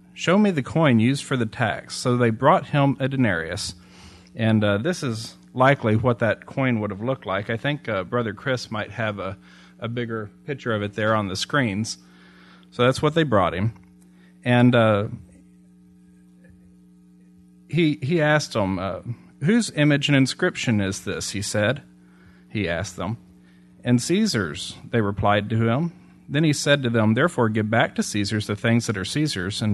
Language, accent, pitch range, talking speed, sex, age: English, American, 90-130 Hz, 180 wpm, male, 40-59